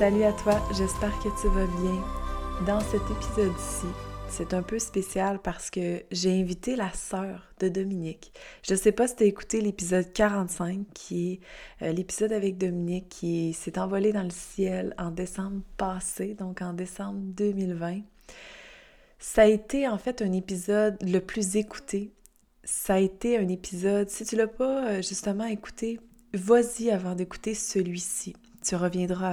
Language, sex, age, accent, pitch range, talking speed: French, female, 20-39, Canadian, 185-210 Hz, 160 wpm